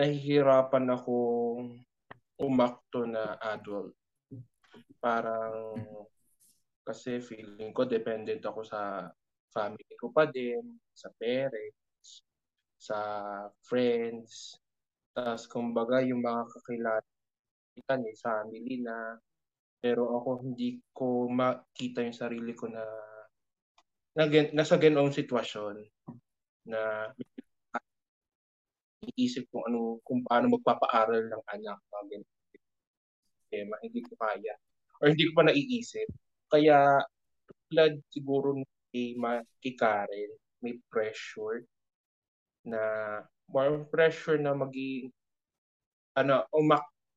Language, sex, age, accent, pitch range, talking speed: Filipino, male, 20-39, native, 115-145 Hz, 95 wpm